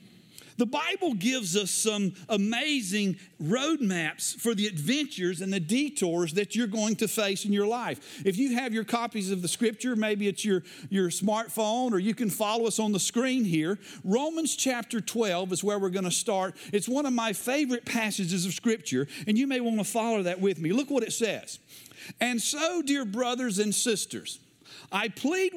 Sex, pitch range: male, 185-250 Hz